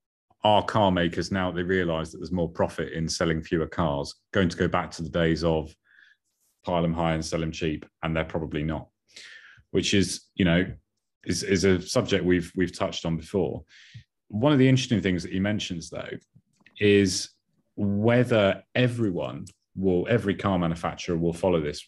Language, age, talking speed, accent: English, 30-49, 180 wpm, British